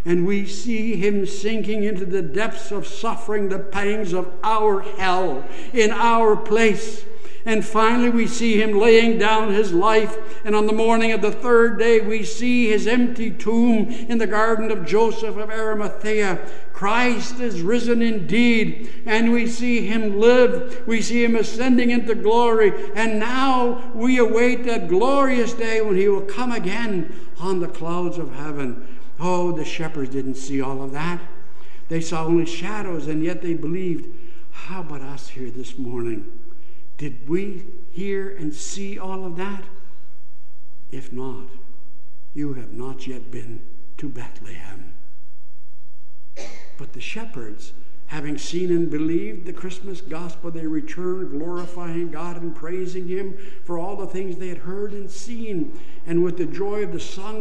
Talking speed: 160 wpm